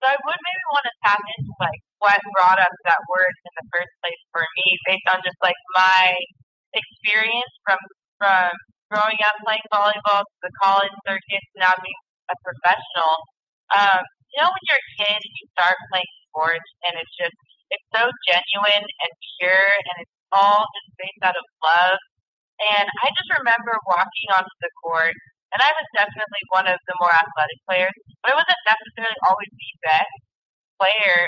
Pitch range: 180-225 Hz